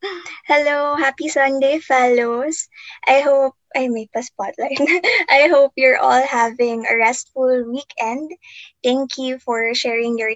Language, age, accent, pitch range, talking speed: Filipino, 20-39, native, 230-280 Hz, 135 wpm